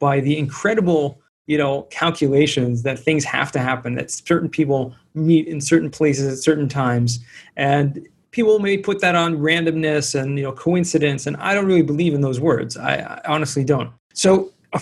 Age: 40-59